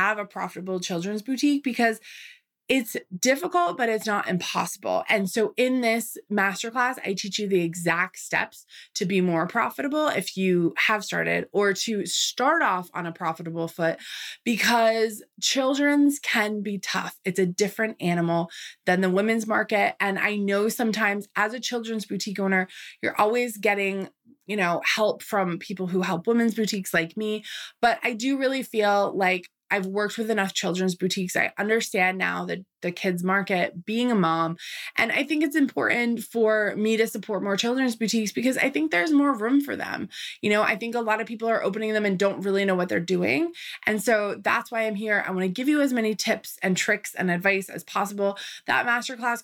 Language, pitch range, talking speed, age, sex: English, 190-235 Hz, 190 wpm, 20-39, female